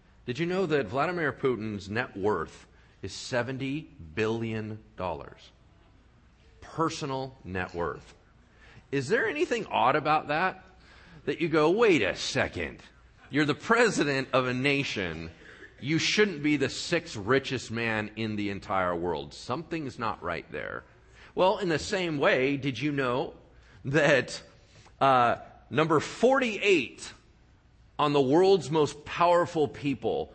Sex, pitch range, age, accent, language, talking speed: male, 105-165 Hz, 40-59, American, English, 130 wpm